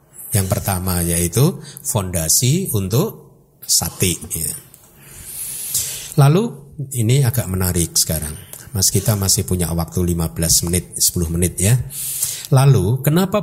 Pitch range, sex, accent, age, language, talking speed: 110-150 Hz, male, native, 50-69, Indonesian, 105 wpm